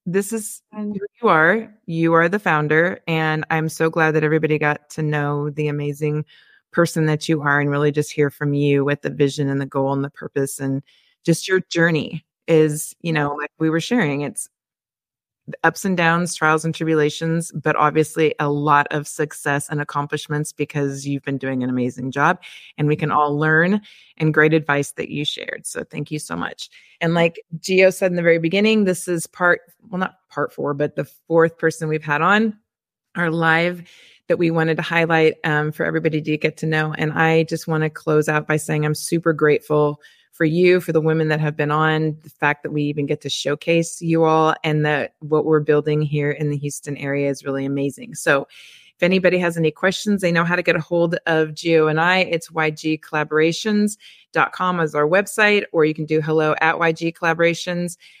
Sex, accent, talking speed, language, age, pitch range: female, American, 205 wpm, English, 20-39, 150-170 Hz